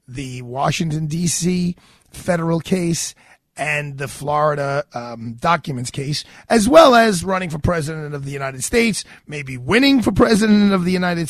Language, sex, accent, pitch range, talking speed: English, male, American, 150-185 Hz, 150 wpm